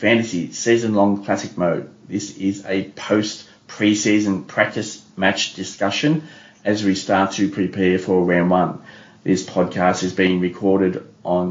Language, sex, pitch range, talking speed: English, male, 95-120 Hz, 130 wpm